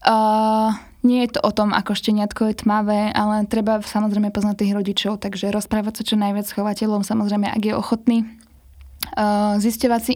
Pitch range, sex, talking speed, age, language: 200-220 Hz, female, 185 wpm, 10-29, Slovak